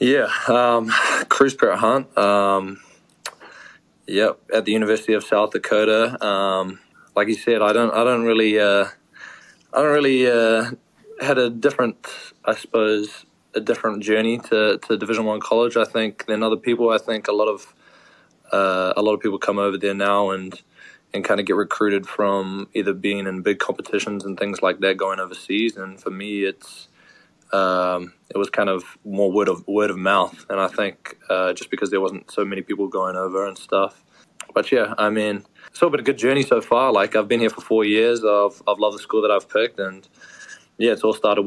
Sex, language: male, English